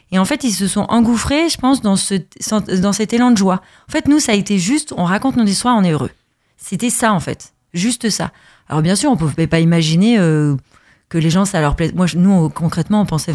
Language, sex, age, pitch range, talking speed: French, female, 30-49, 170-230 Hz, 260 wpm